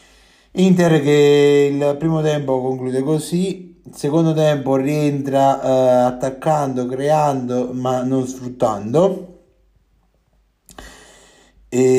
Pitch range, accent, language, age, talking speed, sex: 120-145 Hz, native, Italian, 30-49, 80 wpm, male